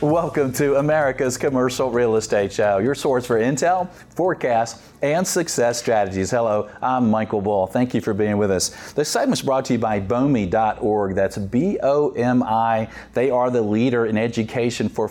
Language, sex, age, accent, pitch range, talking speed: English, male, 40-59, American, 110-130 Hz, 165 wpm